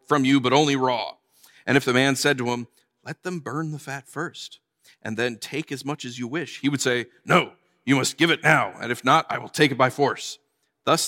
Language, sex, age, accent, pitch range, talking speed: English, male, 40-59, American, 125-170 Hz, 245 wpm